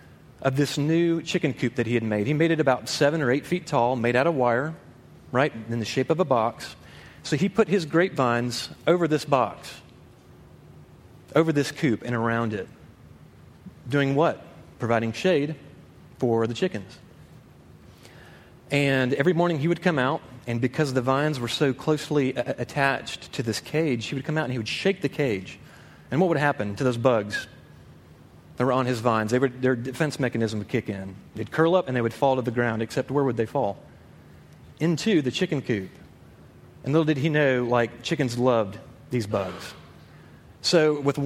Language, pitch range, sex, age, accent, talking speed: English, 120-155 Hz, male, 30-49, American, 190 wpm